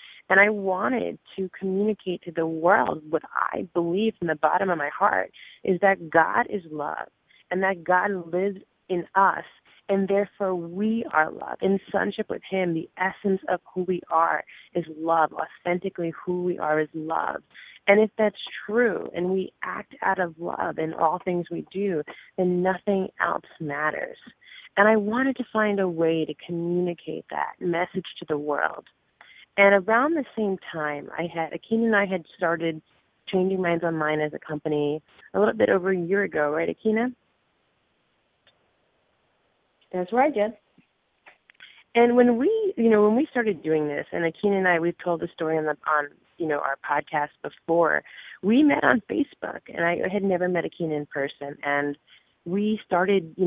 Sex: female